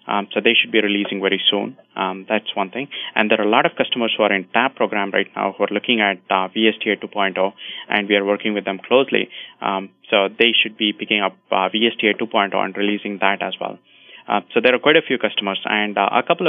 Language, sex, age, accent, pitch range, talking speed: English, male, 20-39, Indian, 100-115 Hz, 245 wpm